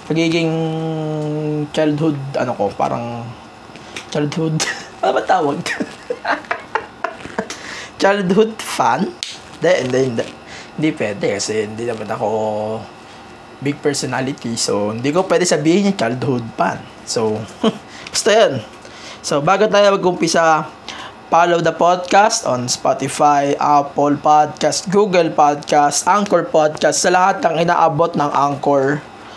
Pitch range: 145-175 Hz